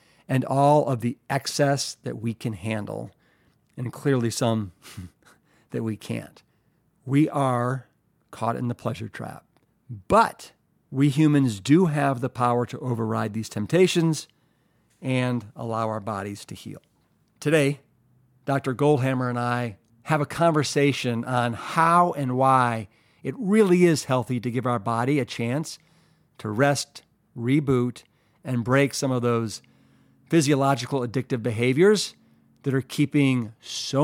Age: 50-69